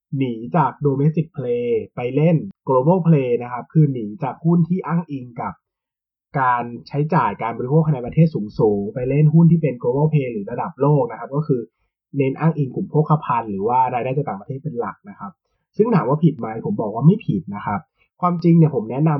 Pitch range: 130-175 Hz